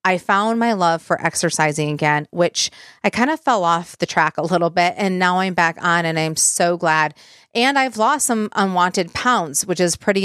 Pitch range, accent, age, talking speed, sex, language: 170-215 Hz, American, 30-49, 210 wpm, female, English